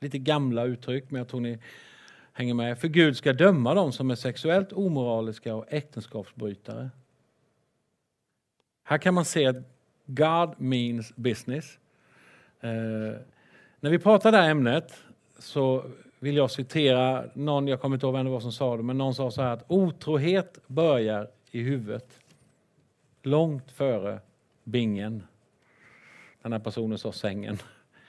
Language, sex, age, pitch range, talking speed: English, male, 50-69, 120-160 Hz, 140 wpm